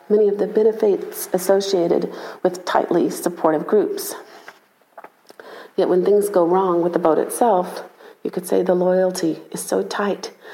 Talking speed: 150 wpm